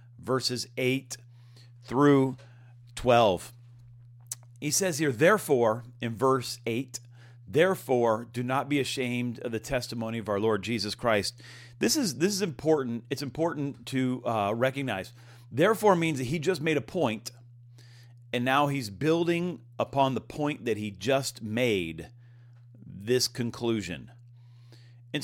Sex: male